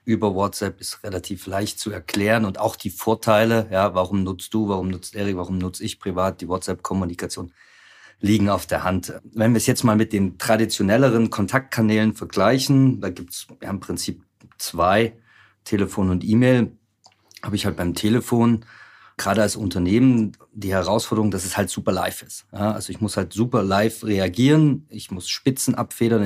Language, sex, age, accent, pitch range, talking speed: German, male, 40-59, German, 95-115 Hz, 175 wpm